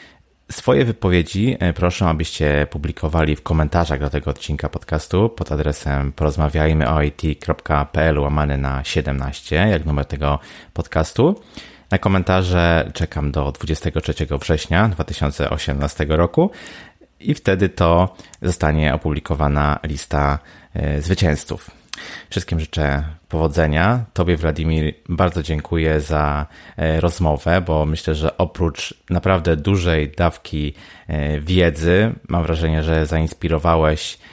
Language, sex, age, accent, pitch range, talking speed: Polish, male, 30-49, native, 75-90 Hz, 95 wpm